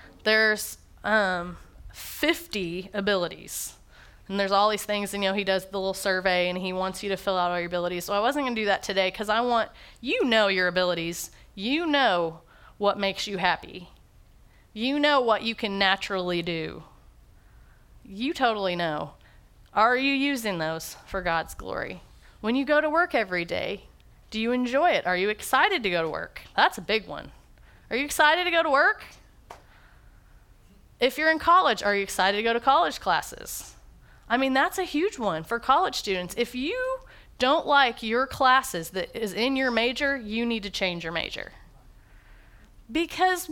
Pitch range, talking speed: 190-285 Hz, 180 wpm